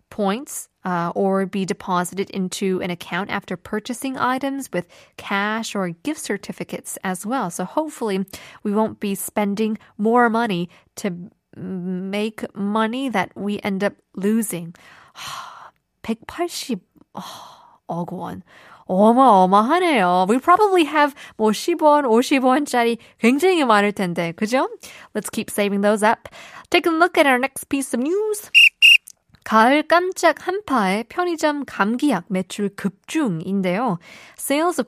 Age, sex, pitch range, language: 20-39, female, 190-270 Hz, Korean